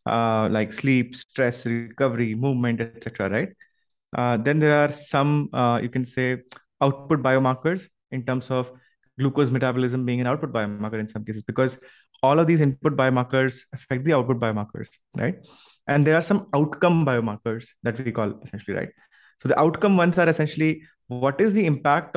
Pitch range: 120-145 Hz